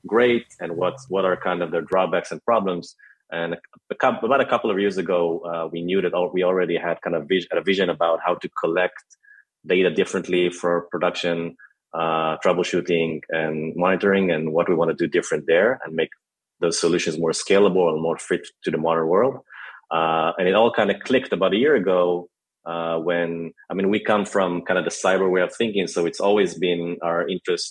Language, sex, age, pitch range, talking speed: English, male, 30-49, 85-90 Hz, 215 wpm